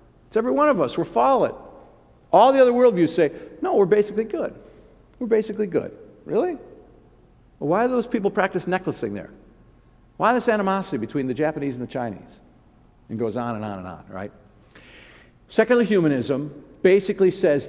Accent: American